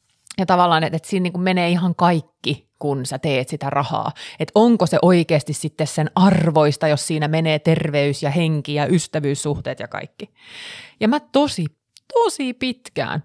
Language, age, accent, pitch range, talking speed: Finnish, 30-49, native, 145-195 Hz, 170 wpm